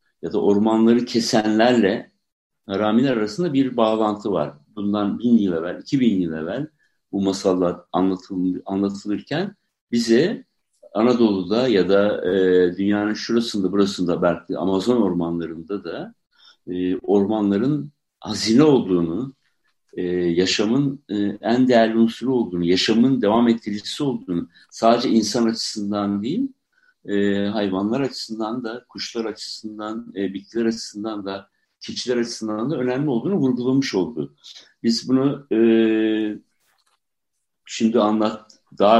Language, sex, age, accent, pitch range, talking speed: Turkish, male, 60-79, native, 100-125 Hz, 115 wpm